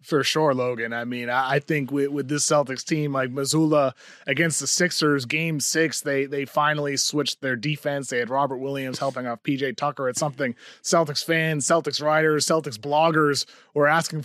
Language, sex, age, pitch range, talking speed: English, male, 20-39, 135-160 Hz, 185 wpm